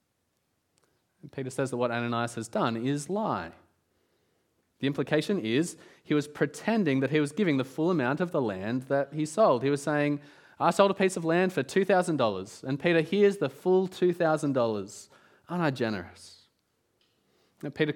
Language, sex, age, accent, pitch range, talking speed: English, male, 20-39, Australian, 135-180 Hz, 165 wpm